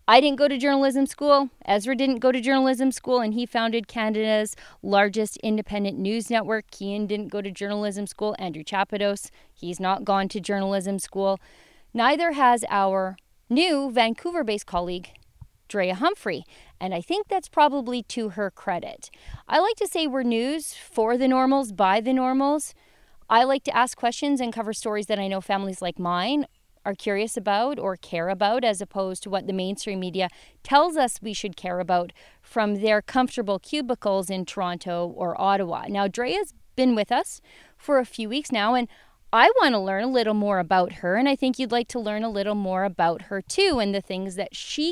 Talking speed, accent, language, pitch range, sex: 190 wpm, American, English, 195-260 Hz, female